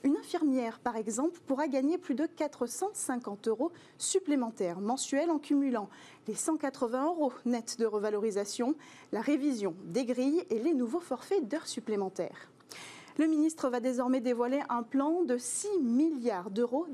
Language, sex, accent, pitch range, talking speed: French, female, French, 235-320 Hz, 145 wpm